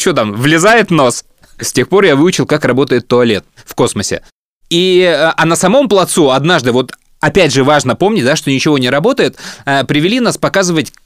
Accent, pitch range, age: native, 140-200 Hz, 20-39